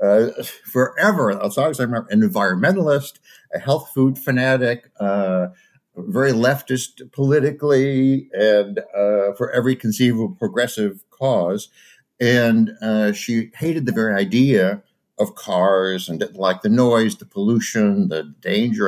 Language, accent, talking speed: English, American, 135 wpm